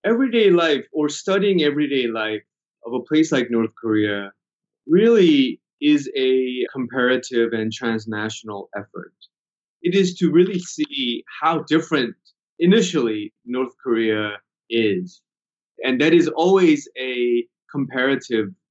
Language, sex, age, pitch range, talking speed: English, male, 20-39, 115-160 Hz, 115 wpm